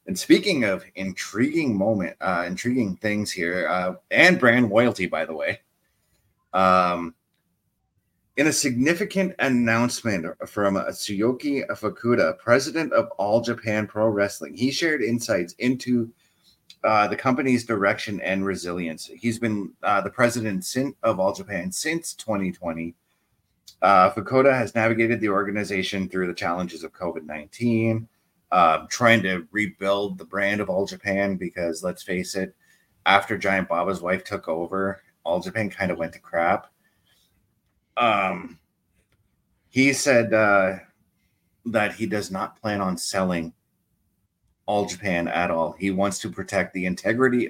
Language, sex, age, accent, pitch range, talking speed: English, male, 30-49, American, 90-115 Hz, 140 wpm